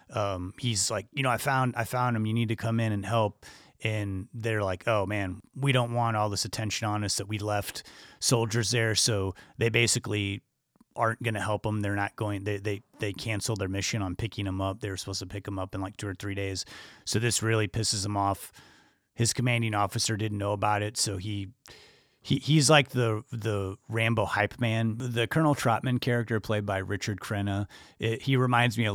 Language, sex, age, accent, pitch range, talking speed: English, male, 30-49, American, 100-120 Hz, 215 wpm